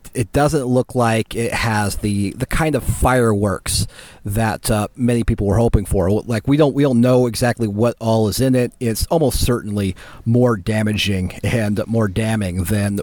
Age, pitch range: 30-49, 105-120 Hz